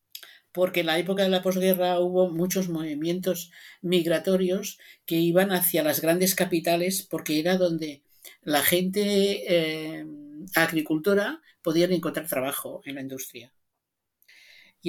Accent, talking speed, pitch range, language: Spanish, 125 wpm, 135-180 Hz, Spanish